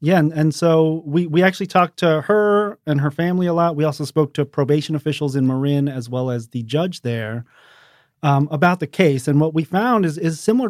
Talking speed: 225 wpm